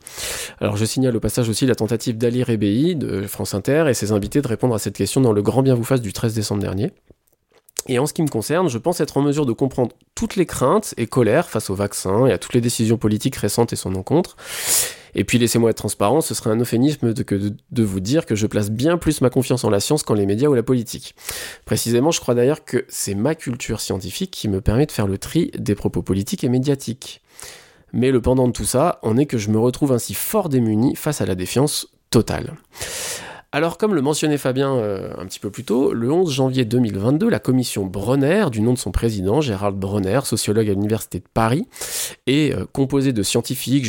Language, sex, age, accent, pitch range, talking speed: French, male, 20-39, French, 105-135 Hz, 230 wpm